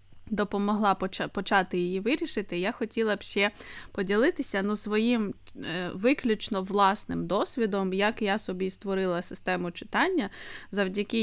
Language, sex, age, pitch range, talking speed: Ukrainian, female, 20-39, 185-230 Hz, 120 wpm